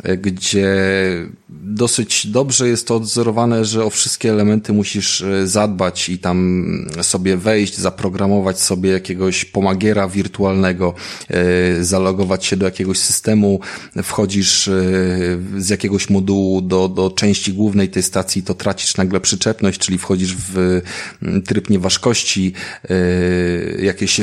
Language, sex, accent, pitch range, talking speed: Polish, male, native, 95-110 Hz, 115 wpm